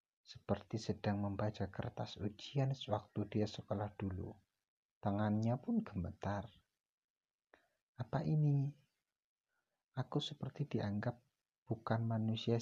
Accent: native